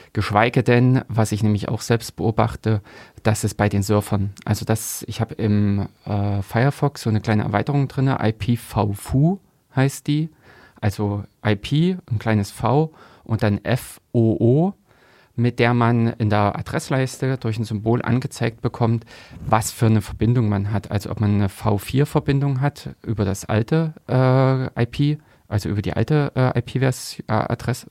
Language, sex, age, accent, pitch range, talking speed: German, male, 30-49, German, 105-125 Hz, 150 wpm